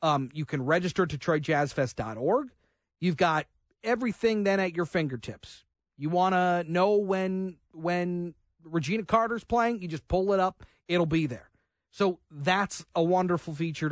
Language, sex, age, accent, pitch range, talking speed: English, male, 40-59, American, 150-185 Hz, 150 wpm